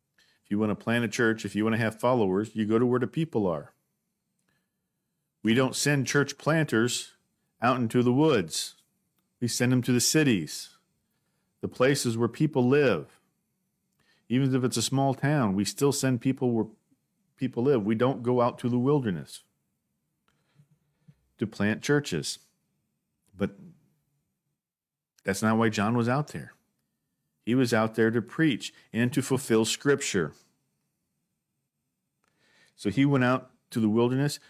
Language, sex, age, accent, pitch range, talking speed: English, male, 50-69, American, 115-140 Hz, 150 wpm